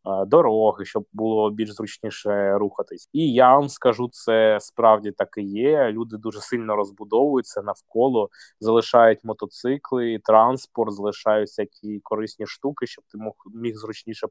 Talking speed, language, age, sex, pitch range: 130 wpm, Ukrainian, 20-39, male, 105-130 Hz